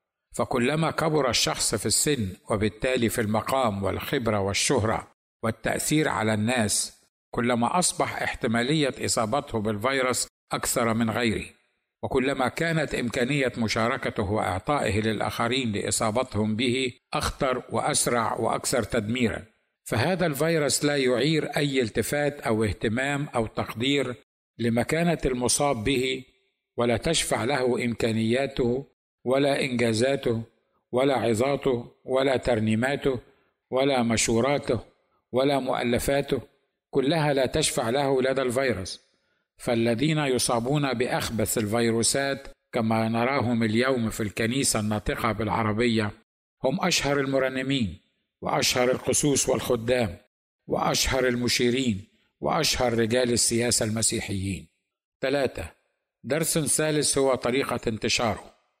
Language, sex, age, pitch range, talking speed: Arabic, male, 50-69, 115-135 Hz, 100 wpm